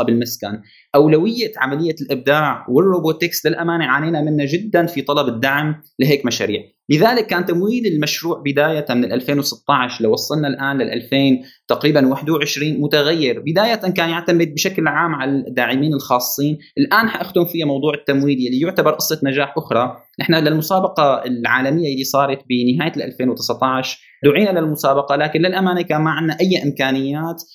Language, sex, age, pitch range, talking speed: Arabic, male, 20-39, 135-175 Hz, 135 wpm